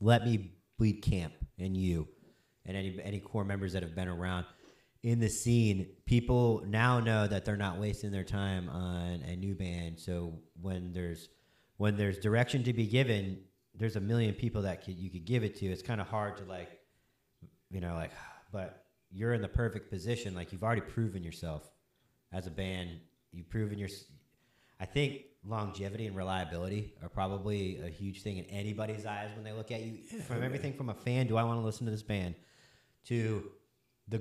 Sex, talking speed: male, 195 wpm